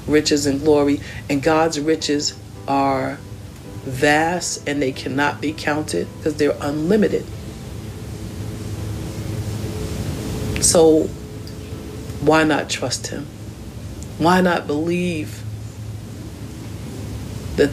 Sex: female